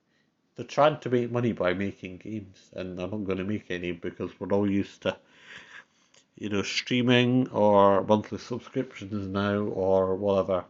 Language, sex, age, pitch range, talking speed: English, male, 50-69, 95-110 Hz, 165 wpm